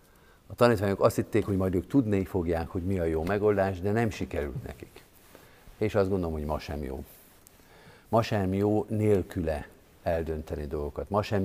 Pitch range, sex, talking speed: 85-105 Hz, male, 175 wpm